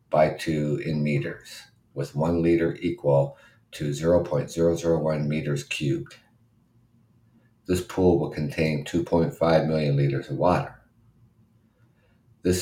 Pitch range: 75-105 Hz